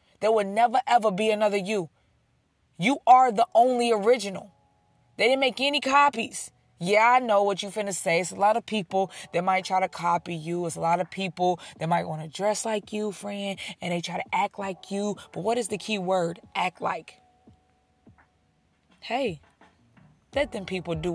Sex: female